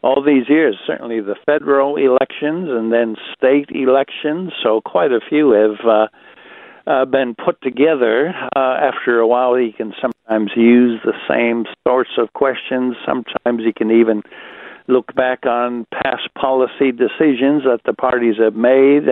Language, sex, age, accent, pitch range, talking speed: English, male, 60-79, American, 115-140 Hz, 155 wpm